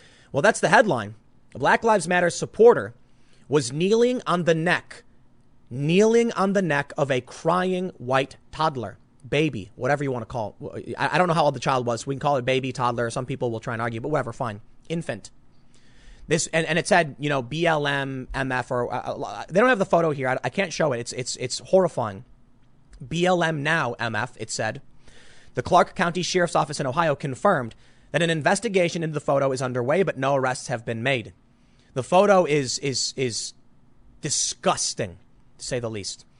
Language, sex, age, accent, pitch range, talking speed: English, male, 30-49, American, 125-175 Hz, 195 wpm